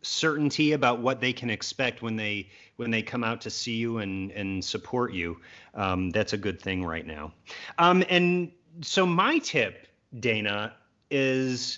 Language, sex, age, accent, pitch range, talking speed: English, male, 30-49, American, 110-145 Hz, 170 wpm